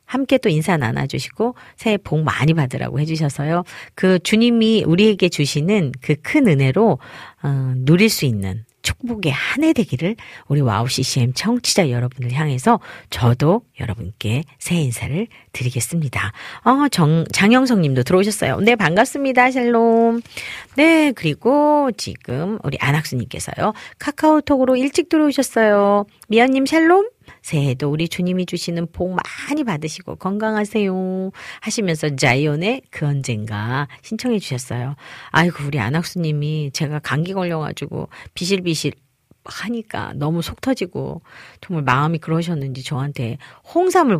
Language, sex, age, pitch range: Korean, female, 40-59, 130-200 Hz